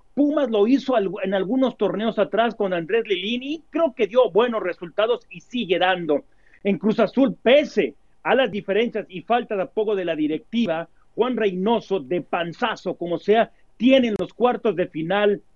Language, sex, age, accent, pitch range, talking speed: Spanish, male, 40-59, Mexican, 190-230 Hz, 175 wpm